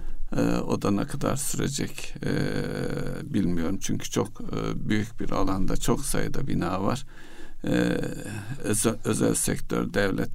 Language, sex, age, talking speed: Turkish, male, 60-79, 120 wpm